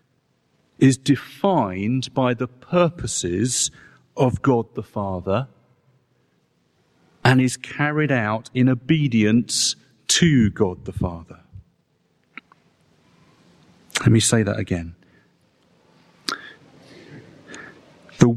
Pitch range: 110-140 Hz